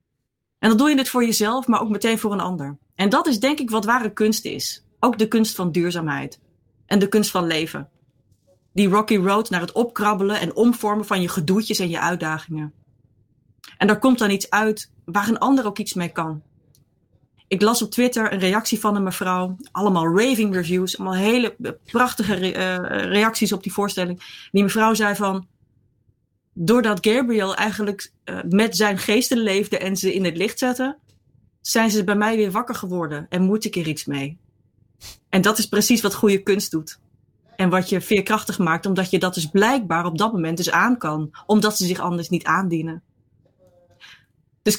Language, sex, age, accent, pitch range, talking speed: Dutch, female, 30-49, Dutch, 165-215 Hz, 190 wpm